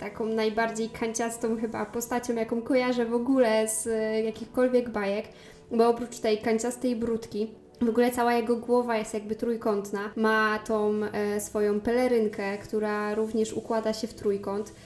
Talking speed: 140 wpm